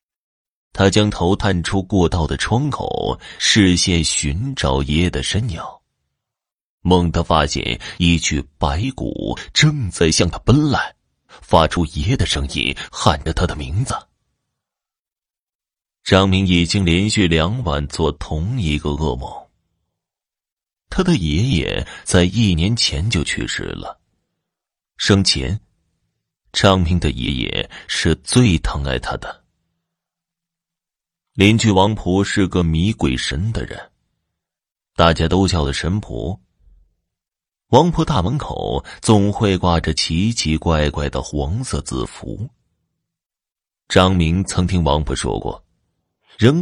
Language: Chinese